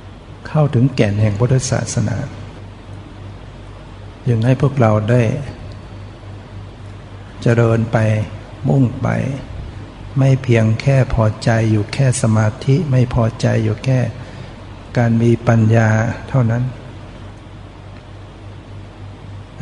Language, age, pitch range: Thai, 60-79, 105-125 Hz